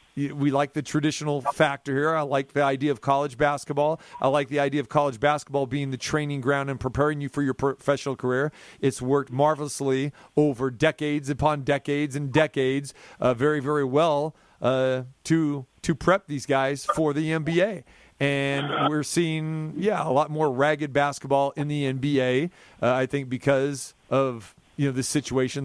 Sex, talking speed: male, 175 wpm